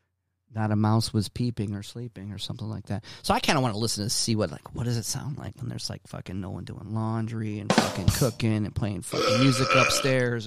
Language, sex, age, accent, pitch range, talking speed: English, male, 40-59, American, 105-130 Hz, 245 wpm